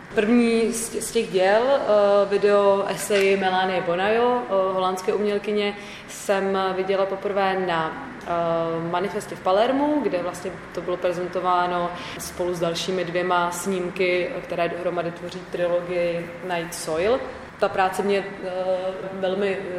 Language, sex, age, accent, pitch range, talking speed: Czech, female, 20-39, native, 185-210 Hz, 110 wpm